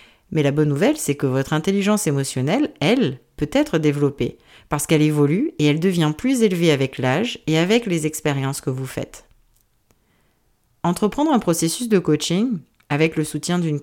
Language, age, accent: French, 40-59, French